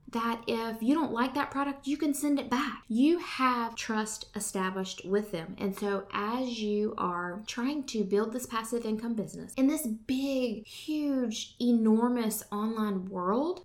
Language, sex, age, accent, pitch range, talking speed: English, female, 20-39, American, 195-240 Hz, 165 wpm